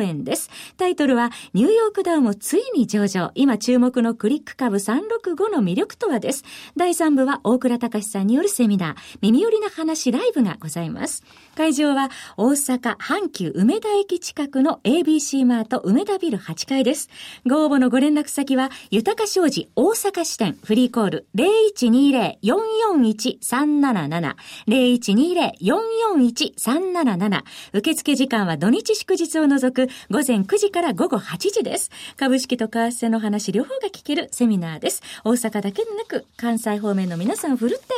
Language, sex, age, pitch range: Japanese, female, 40-59, 225-330 Hz